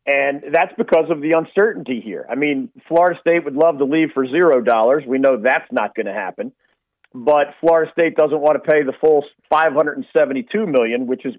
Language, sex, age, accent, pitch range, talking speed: English, male, 40-59, American, 130-170 Hz, 210 wpm